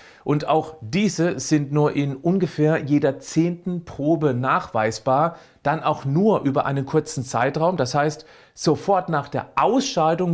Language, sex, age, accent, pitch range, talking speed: German, male, 40-59, German, 135-170 Hz, 140 wpm